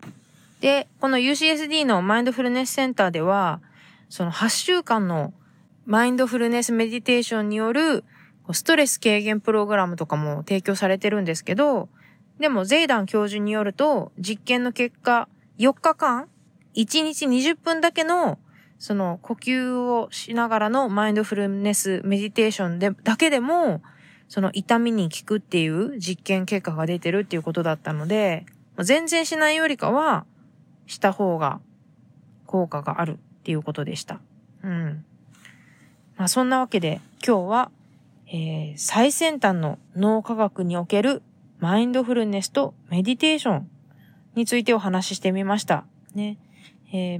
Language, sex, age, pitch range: Japanese, female, 20-39, 180-240 Hz